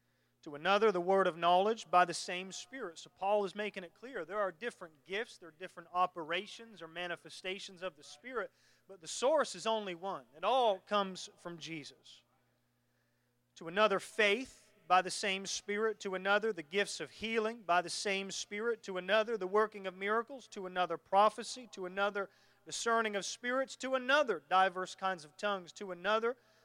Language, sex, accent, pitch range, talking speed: English, male, American, 180-230 Hz, 180 wpm